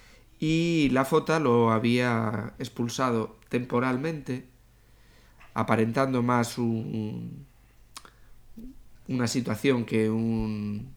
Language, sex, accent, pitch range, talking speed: Spanish, male, Spanish, 110-130 Hz, 75 wpm